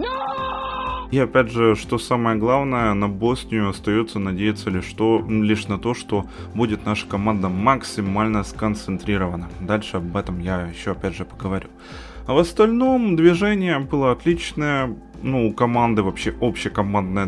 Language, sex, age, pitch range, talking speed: Ukrainian, male, 20-39, 100-125 Hz, 130 wpm